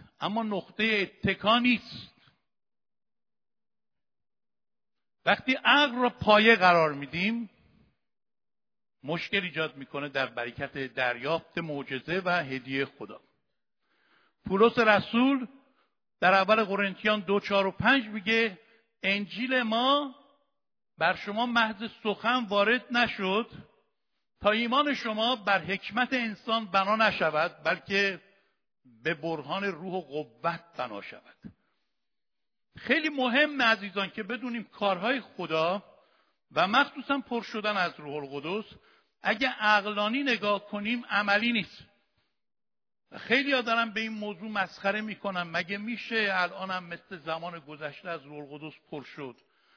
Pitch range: 180-230 Hz